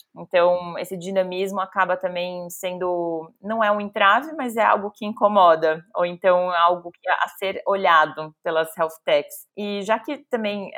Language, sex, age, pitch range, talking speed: Portuguese, female, 20-39, 180-200 Hz, 155 wpm